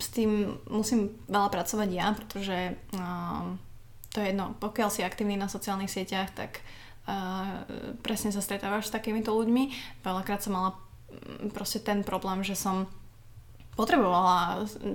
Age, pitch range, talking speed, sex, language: 20-39, 180-210 Hz, 135 wpm, female, Slovak